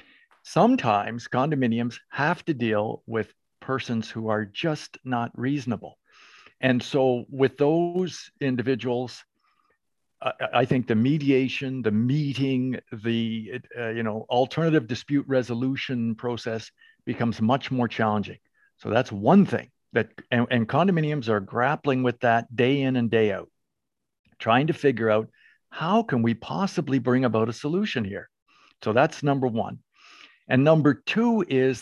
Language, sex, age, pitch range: English, male, 50-69, 115-150 Hz